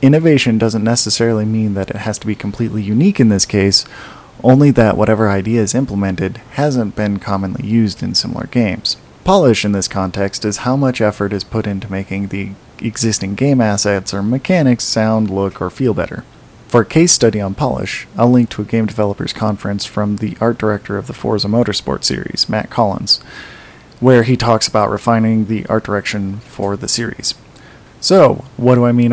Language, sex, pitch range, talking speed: English, male, 100-125 Hz, 185 wpm